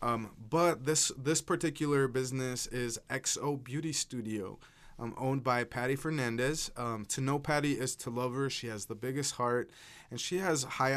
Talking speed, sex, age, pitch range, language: 175 wpm, male, 20-39, 115-140 Hz, English